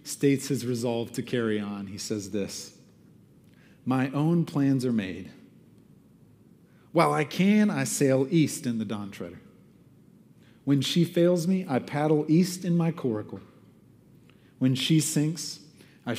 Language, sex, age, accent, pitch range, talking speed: English, male, 40-59, American, 115-145 Hz, 140 wpm